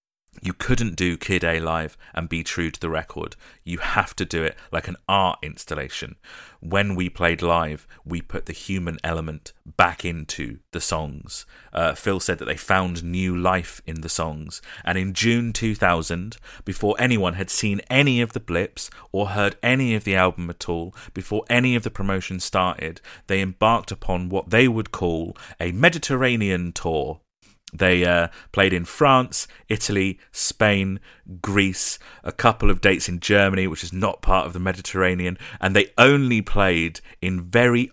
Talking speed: 170 wpm